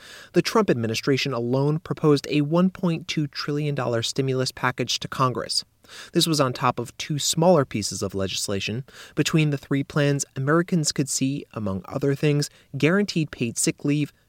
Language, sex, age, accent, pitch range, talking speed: English, male, 30-49, American, 115-145 Hz, 150 wpm